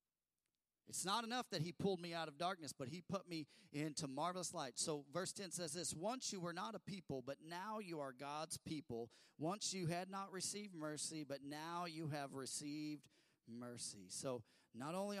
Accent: American